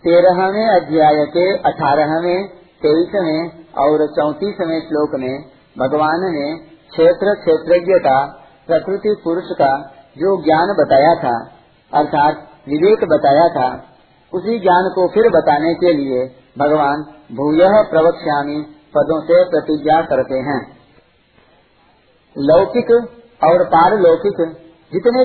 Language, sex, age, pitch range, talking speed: Hindi, male, 50-69, 150-185 Hz, 105 wpm